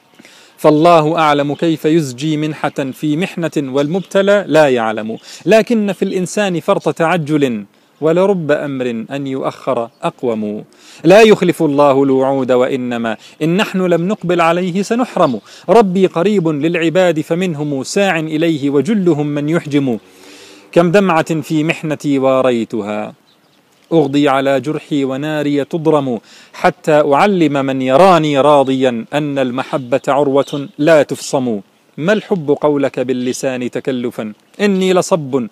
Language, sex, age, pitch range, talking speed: Arabic, male, 40-59, 135-175 Hz, 115 wpm